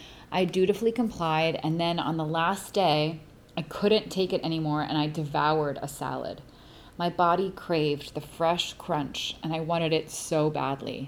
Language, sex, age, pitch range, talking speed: English, female, 30-49, 145-185 Hz, 170 wpm